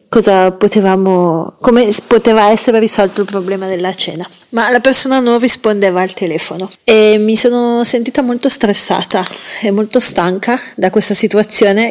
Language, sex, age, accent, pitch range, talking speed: Italian, female, 30-49, native, 185-225 Hz, 145 wpm